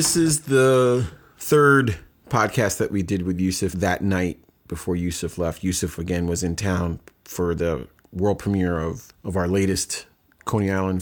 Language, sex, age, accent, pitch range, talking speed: English, male, 30-49, American, 90-105 Hz, 165 wpm